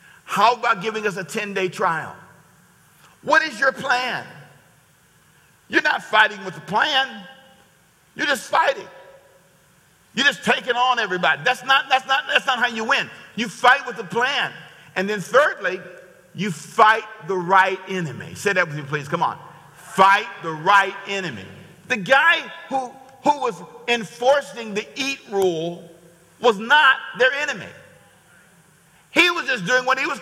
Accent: American